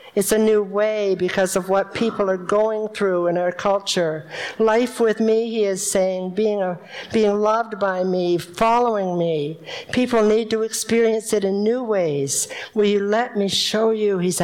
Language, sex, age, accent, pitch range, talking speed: English, female, 60-79, American, 175-210 Hz, 175 wpm